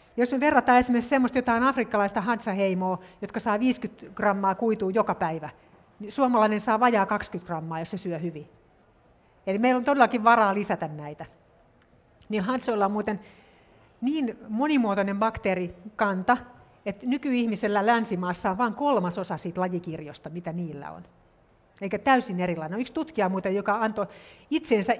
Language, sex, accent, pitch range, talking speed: Finnish, female, native, 185-240 Hz, 140 wpm